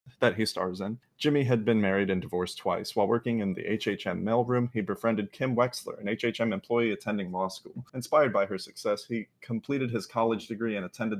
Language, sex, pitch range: English, male, 105-120 Hz